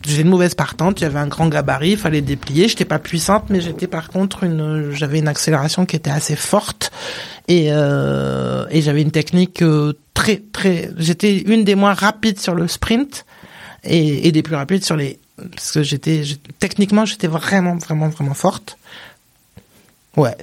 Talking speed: 180 wpm